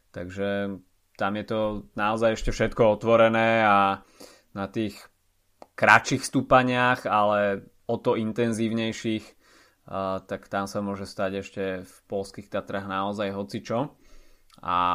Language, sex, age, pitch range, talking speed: Slovak, male, 20-39, 95-115 Hz, 115 wpm